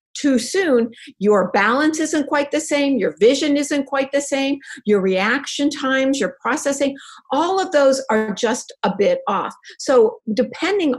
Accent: American